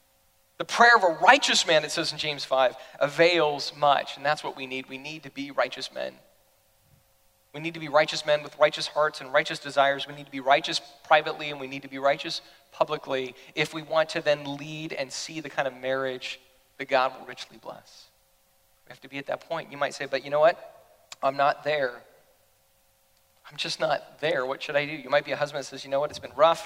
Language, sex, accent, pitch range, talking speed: English, male, American, 135-160 Hz, 235 wpm